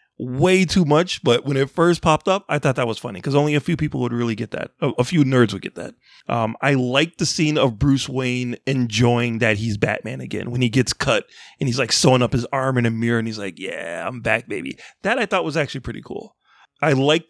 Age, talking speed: 30-49, 250 wpm